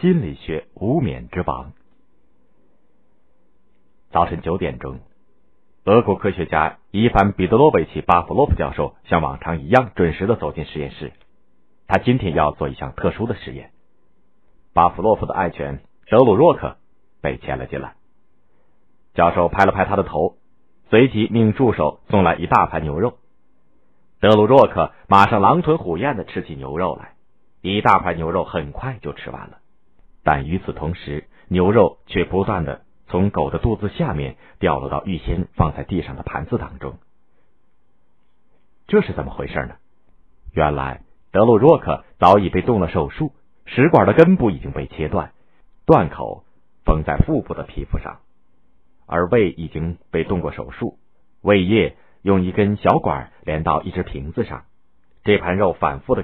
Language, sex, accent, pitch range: Chinese, male, native, 75-100 Hz